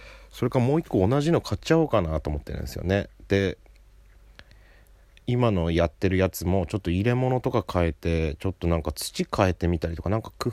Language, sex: Japanese, male